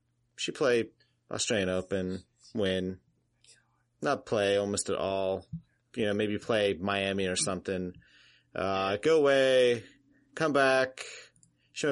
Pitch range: 105-125 Hz